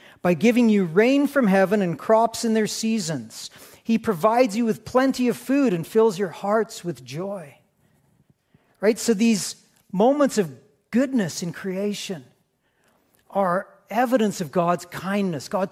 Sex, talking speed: male, 145 wpm